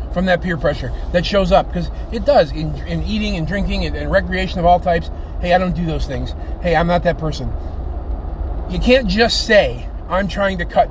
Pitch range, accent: 135-200 Hz, American